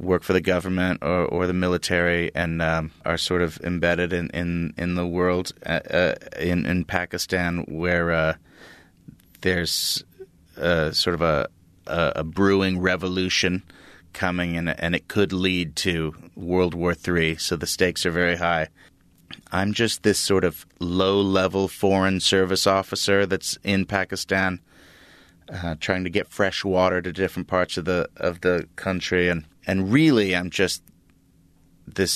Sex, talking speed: male, 155 wpm